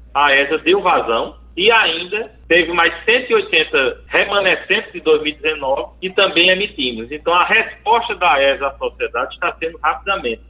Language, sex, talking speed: Portuguese, male, 145 wpm